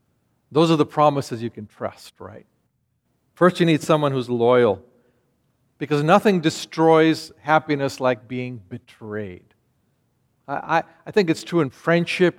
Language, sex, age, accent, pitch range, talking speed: English, male, 50-69, American, 120-160 Hz, 140 wpm